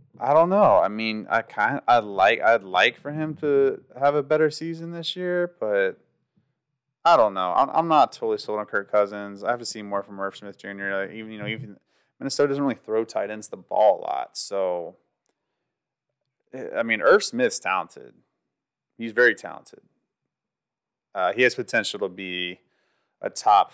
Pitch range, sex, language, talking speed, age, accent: 100-155 Hz, male, English, 190 wpm, 30-49, American